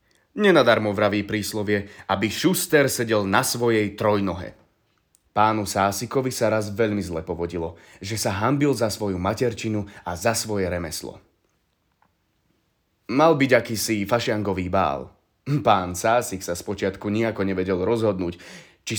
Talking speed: 120 wpm